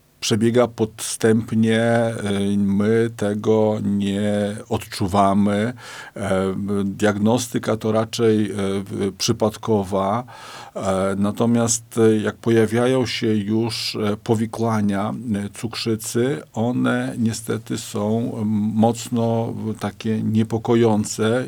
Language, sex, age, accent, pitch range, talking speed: Polish, male, 50-69, native, 105-120 Hz, 65 wpm